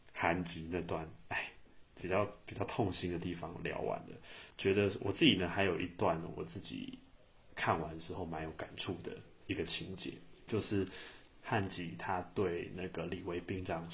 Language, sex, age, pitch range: Chinese, male, 30-49, 85-100 Hz